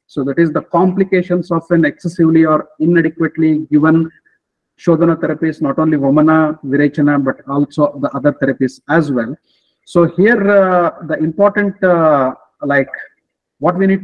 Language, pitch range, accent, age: English, 145-175 Hz, Indian, 50-69